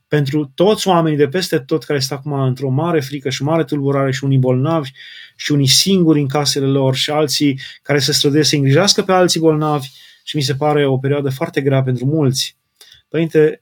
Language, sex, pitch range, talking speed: Romanian, male, 135-160 Hz, 200 wpm